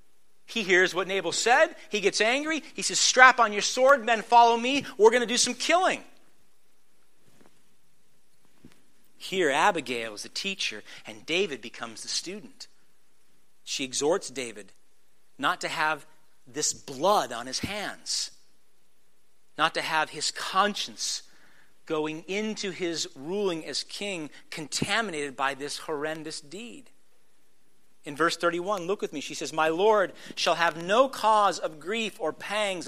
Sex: male